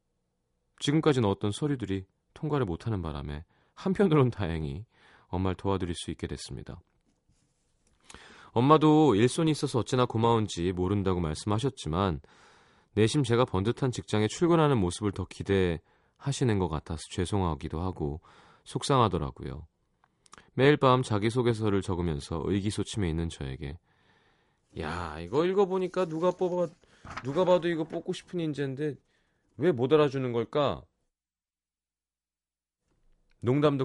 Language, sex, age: Korean, male, 30-49